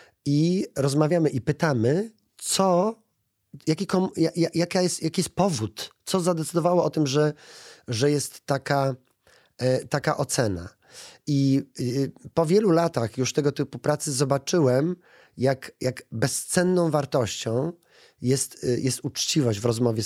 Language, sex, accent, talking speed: Polish, male, native, 110 wpm